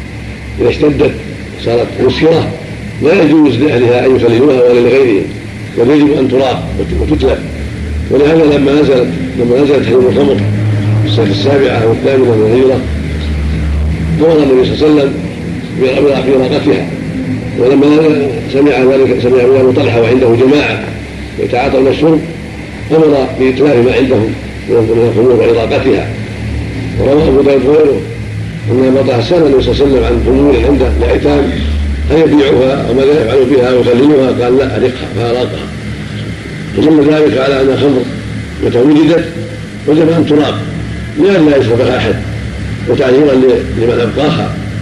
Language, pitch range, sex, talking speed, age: Arabic, 105-140 Hz, male, 120 wpm, 50-69